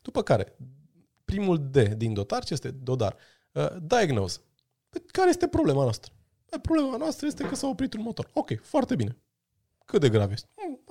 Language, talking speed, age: Romanian, 175 wpm, 20-39